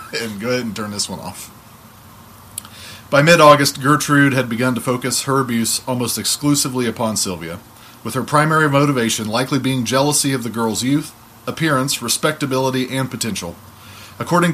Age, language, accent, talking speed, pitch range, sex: 30-49, English, American, 155 wpm, 115-150 Hz, male